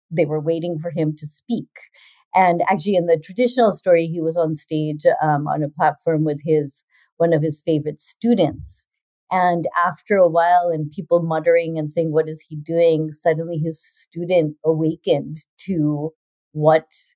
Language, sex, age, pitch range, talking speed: English, female, 40-59, 155-180 Hz, 165 wpm